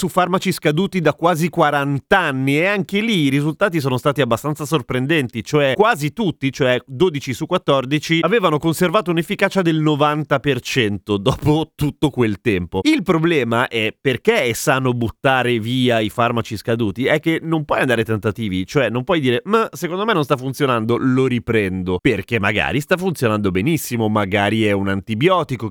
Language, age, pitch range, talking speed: Italian, 30-49, 115-155 Hz, 165 wpm